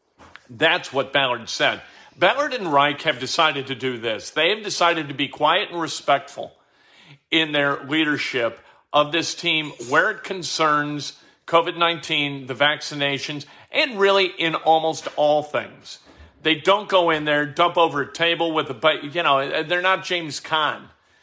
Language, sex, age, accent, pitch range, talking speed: English, male, 50-69, American, 140-170 Hz, 160 wpm